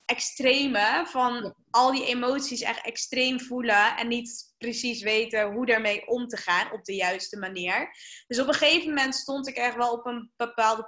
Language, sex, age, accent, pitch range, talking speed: Dutch, female, 10-29, Dutch, 215-270 Hz, 180 wpm